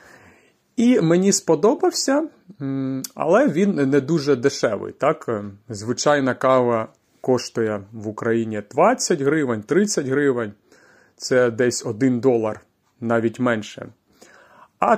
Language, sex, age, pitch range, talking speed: Ukrainian, male, 30-49, 120-170 Hz, 100 wpm